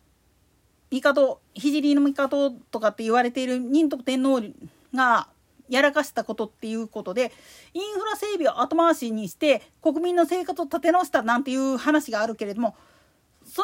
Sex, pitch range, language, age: female, 245-355 Hz, Japanese, 40-59